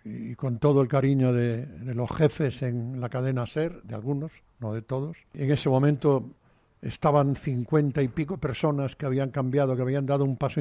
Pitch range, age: 125-150 Hz, 60-79